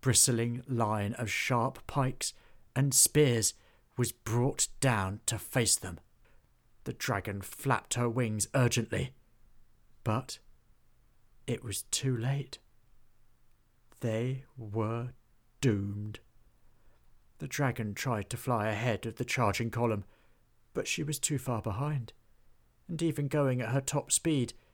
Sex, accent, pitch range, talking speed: male, British, 110-125 Hz, 120 wpm